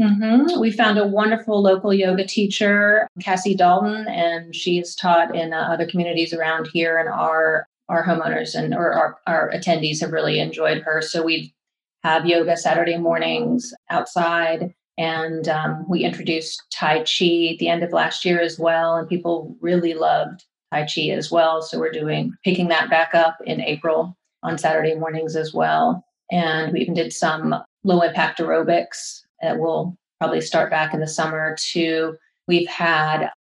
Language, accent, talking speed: English, American, 170 wpm